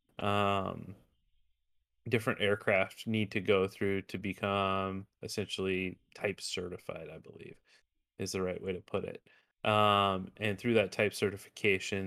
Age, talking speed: 30-49, 135 wpm